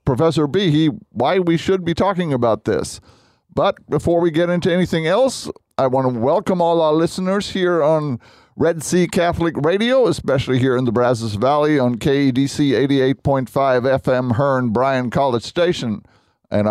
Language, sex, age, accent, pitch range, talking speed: English, male, 50-69, American, 125-165 Hz, 160 wpm